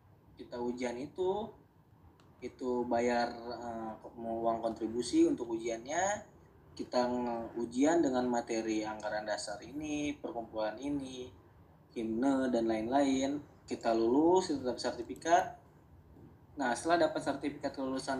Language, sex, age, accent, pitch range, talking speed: Indonesian, male, 20-39, native, 120-150 Hz, 105 wpm